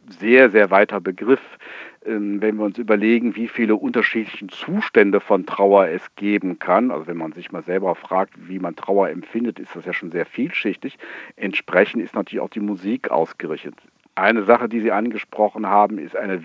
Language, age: German, 50-69